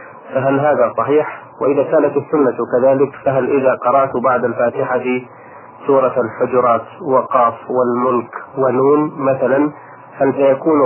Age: 30-49